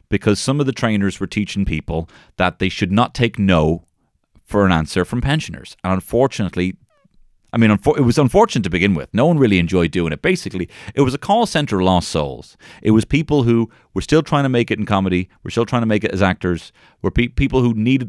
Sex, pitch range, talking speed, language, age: male, 90-120 Hz, 225 wpm, English, 30-49